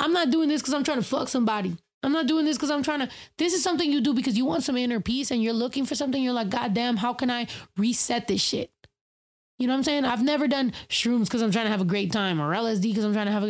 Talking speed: 305 wpm